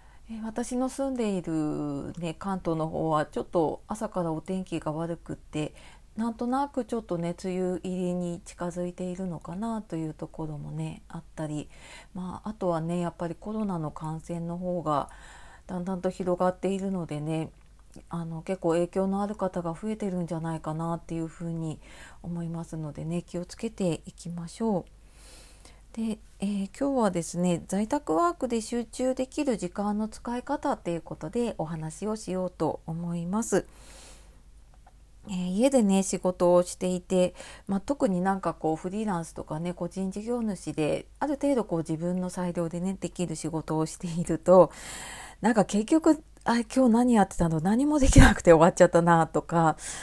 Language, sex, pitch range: Japanese, female, 165-210 Hz